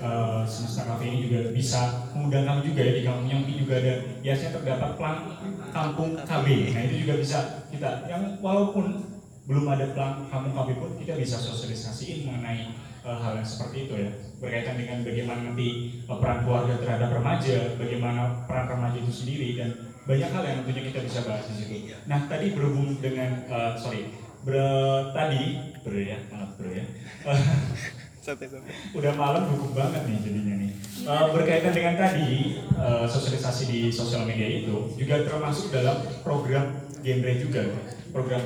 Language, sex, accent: Indonesian, male, native